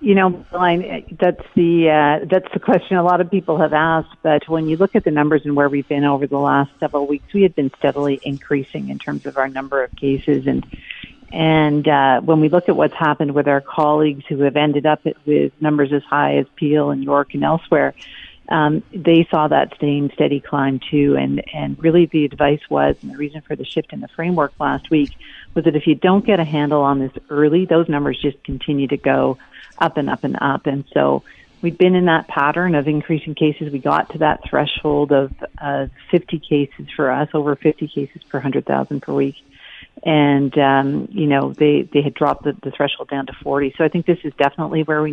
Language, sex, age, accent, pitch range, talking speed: English, female, 50-69, American, 140-160 Hz, 220 wpm